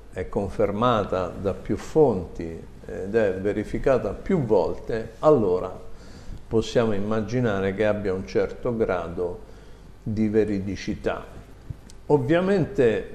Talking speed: 95 wpm